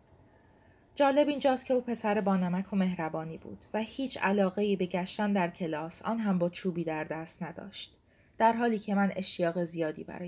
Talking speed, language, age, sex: 175 wpm, Persian, 30-49, female